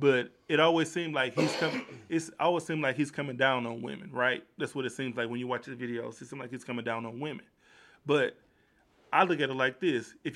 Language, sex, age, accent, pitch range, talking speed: English, male, 20-39, American, 130-160 Hz, 250 wpm